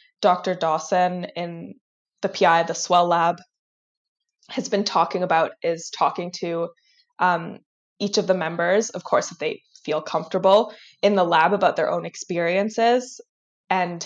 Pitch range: 170-205 Hz